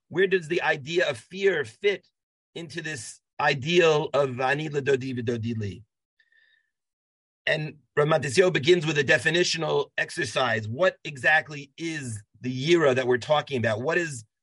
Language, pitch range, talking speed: English, 135-180 Hz, 115 wpm